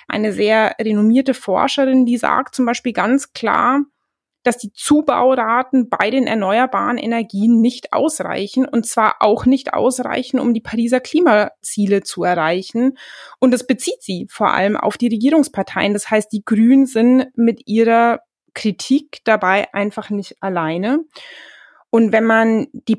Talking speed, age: 145 wpm, 20-39